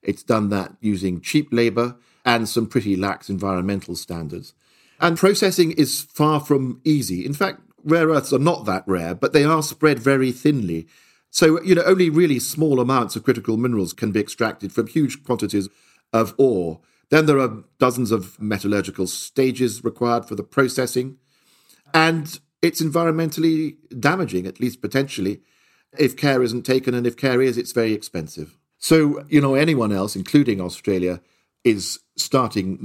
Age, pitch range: 50-69, 95-135 Hz